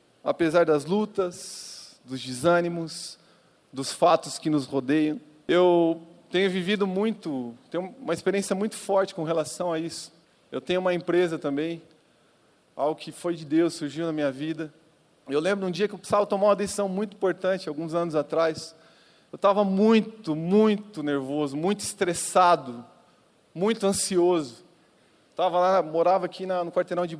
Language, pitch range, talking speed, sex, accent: Portuguese, 155-195 Hz, 150 wpm, male, Brazilian